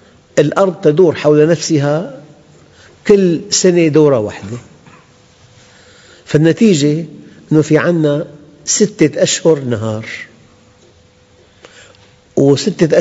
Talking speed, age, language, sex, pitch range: 70 wpm, 50-69, Arabic, male, 125-170 Hz